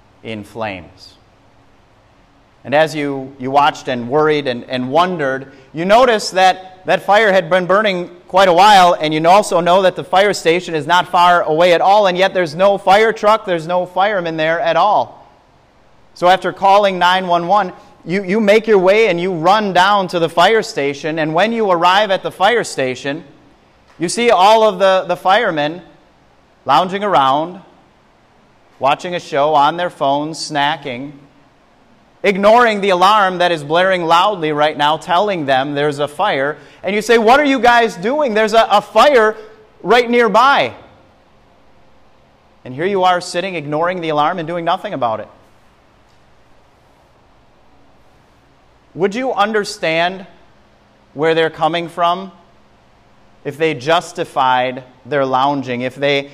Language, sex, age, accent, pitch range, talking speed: English, male, 30-49, American, 145-190 Hz, 155 wpm